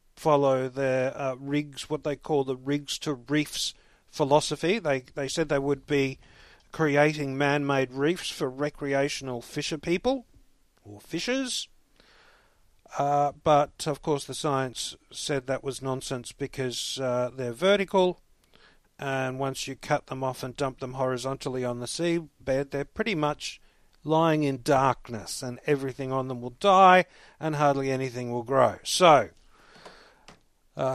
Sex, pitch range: male, 135-165 Hz